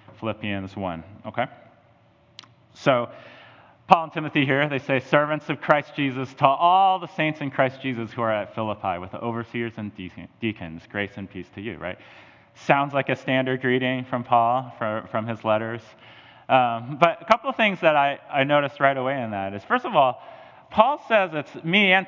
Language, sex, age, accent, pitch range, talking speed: English, male, 30-49, American, 110-145 Hz, 190 wpm